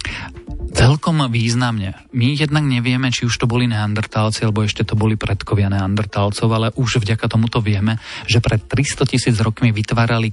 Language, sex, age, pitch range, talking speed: Slovak, male, 40-59, 105-120 Hz, 155 wpm